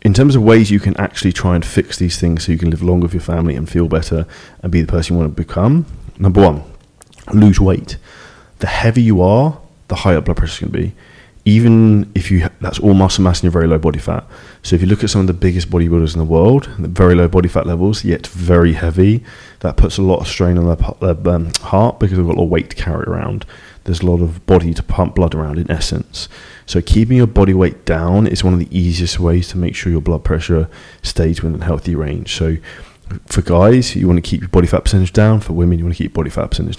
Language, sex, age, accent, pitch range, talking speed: English, male, 30-49, British, 85-100 Hz, 260 wpm